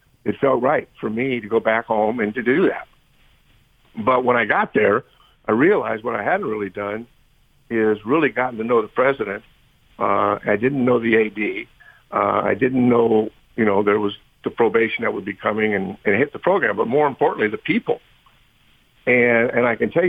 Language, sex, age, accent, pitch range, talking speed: English, male, 60-79, American, 110-135 Hz, 200 wpm